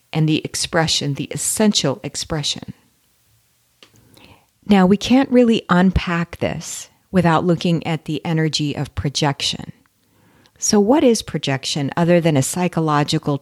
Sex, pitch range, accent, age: female, 145-180 Hz, American, 50-69